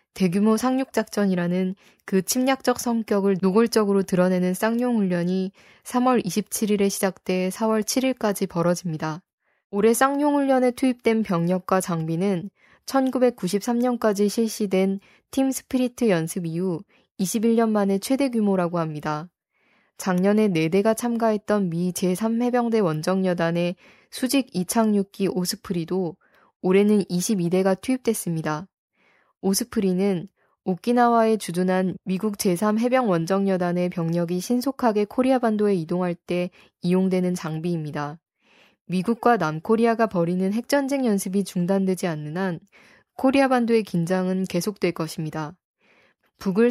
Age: 20-39